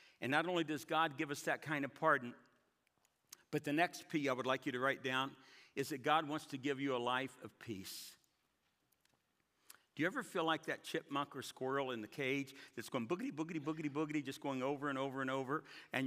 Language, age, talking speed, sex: English, 60-79, 220 wpm, male